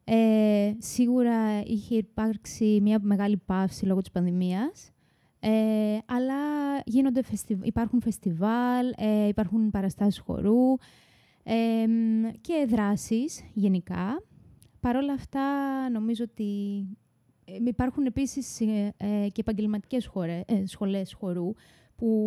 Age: 20-39